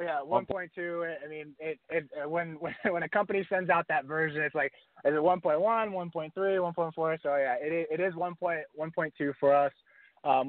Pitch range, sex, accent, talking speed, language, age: 110-140 Hz, male, American, 175 wpm, English, 20-39